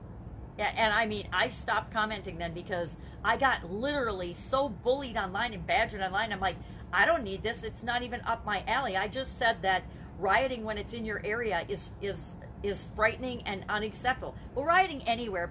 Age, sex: 40-59, female